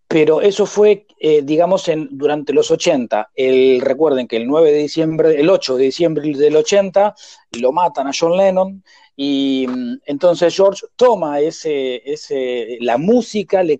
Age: 40-59